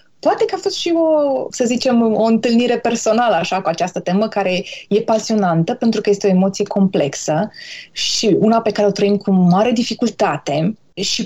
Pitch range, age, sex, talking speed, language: 195-250 Hz, 20-39, female, 180 wpm, Romanian